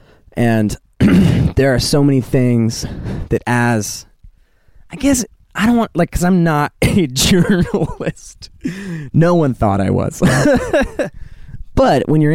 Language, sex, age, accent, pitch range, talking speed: English, male, 20-39, American, 100-135 Hz, 130 wpm